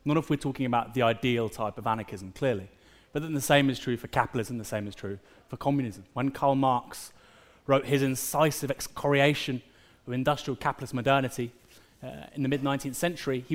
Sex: male